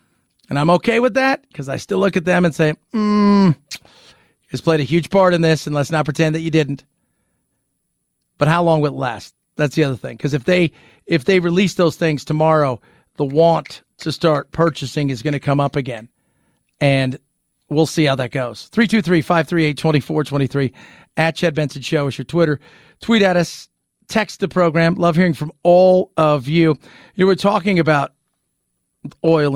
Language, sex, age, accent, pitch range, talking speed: English, male, 40-59, American, 150-200 Hz, 180 wpm